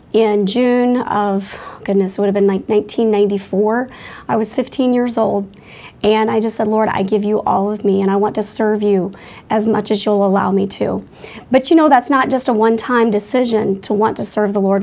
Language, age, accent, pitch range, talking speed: English, 40-59, American, 210-245 Hz, 220 wpm